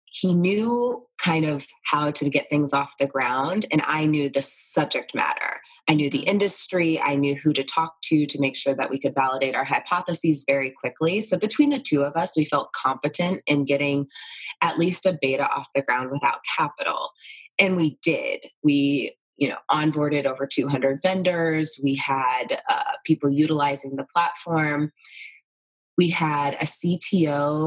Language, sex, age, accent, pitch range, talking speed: English, female, 20-39, American, 140-175 Hz, 170 wpm